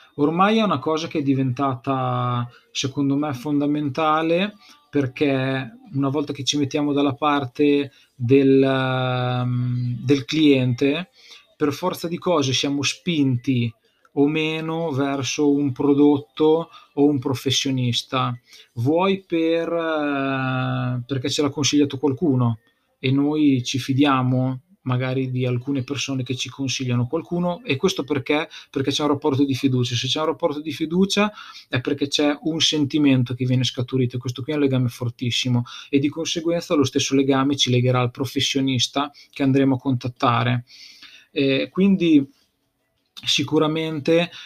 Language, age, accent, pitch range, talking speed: Italian, 20-39, native, 130-150 Hz, 135 wpm